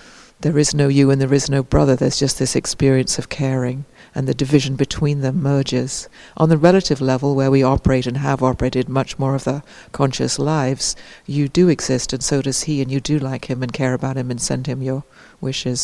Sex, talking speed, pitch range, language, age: female, 220 wpm, 130-145 Hz, English, 60-79